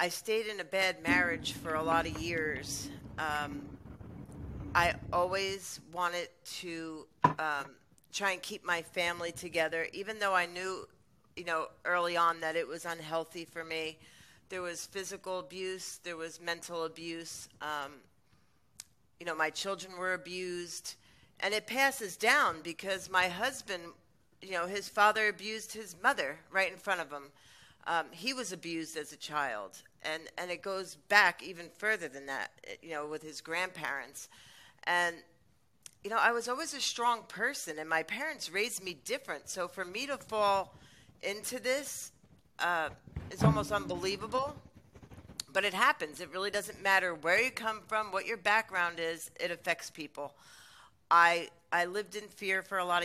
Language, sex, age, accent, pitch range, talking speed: English, female, 40-59, American, 165-195 Hz, 165 wpm